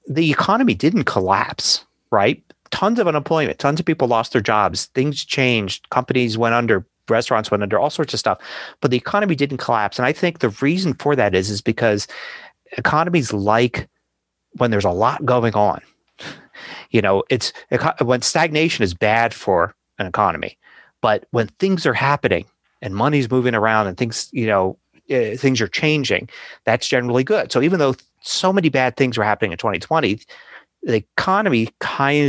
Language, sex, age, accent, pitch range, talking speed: English, male, 30-49, American, 110-150 Hz, 170 wpm